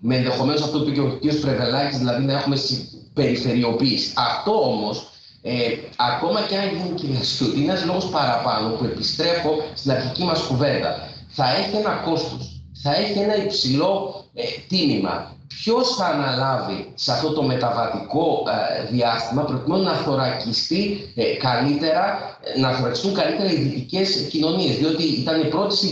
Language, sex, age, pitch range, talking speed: Greek, male, 40-59, 125-160 Hz, 145 wpm